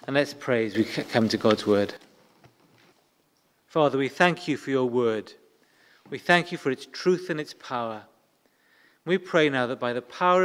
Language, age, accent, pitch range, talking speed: English, 40-59, British, 130-195 Hz, 185 wpm